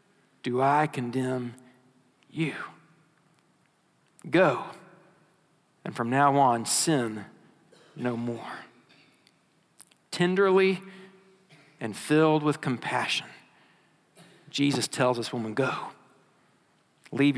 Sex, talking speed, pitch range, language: male, 80 wpm, 135-185 Hz, English